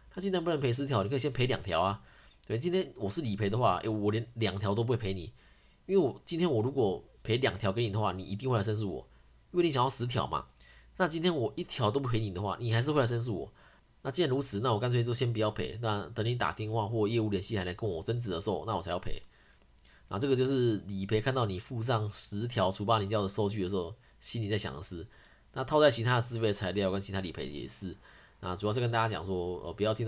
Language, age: Chinese, 20-39